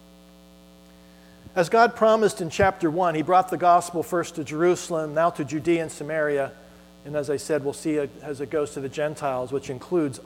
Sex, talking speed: male, 185 wpm